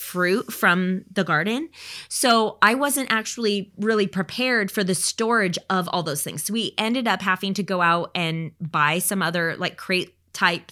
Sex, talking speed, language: female, 180 wpm, English